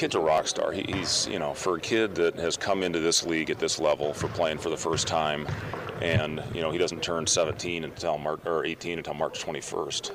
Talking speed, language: 220 wpm, English